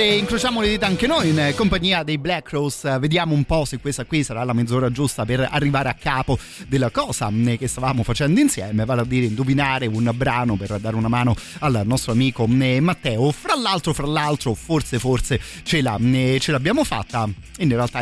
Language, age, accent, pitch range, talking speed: Italian, 30-49, native, 115-140 Hz, 195 wpm